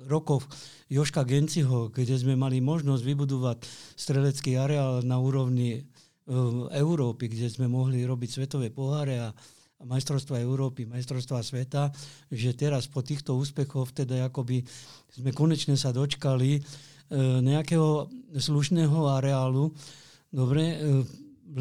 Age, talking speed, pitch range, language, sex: 50-69, 115 wpm, 130-145 Hz, Slovak, male